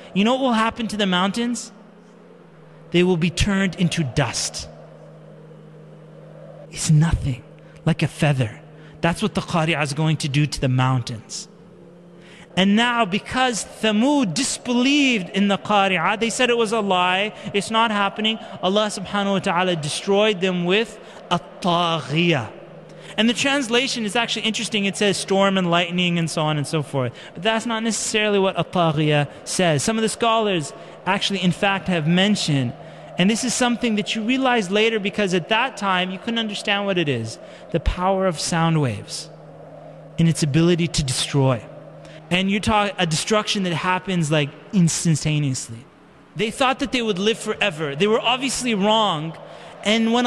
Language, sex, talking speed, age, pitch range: English, male, 165 wpm, 30-49, 165-220 Hz